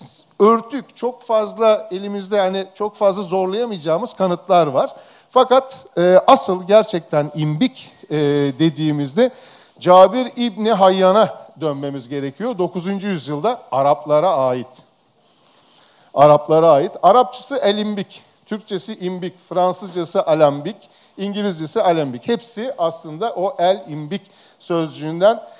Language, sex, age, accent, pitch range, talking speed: Turkish, male, 50-69, native, 160-225 Hz, 100 wpm